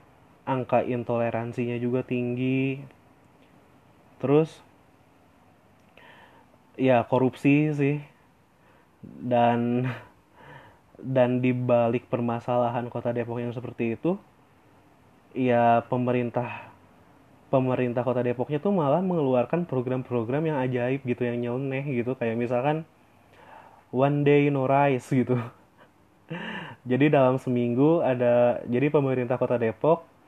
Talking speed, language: 95 wpm, Indonesian